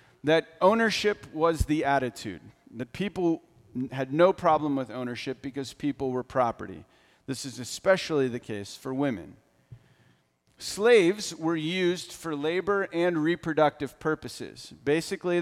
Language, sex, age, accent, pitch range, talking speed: English, male, 40-59, American, 130-170 Hz, 125 wpm